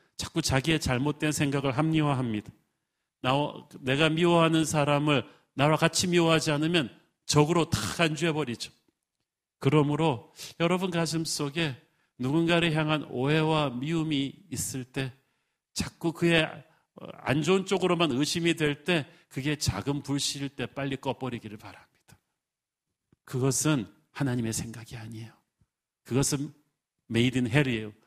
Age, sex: 40-59, male